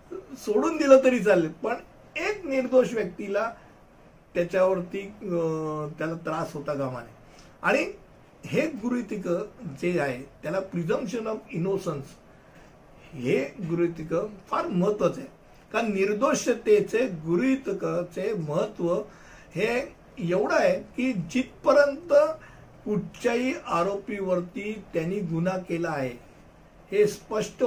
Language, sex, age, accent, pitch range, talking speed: Hindi, male, 60-79, native, 165-220 Hz, 85 wpm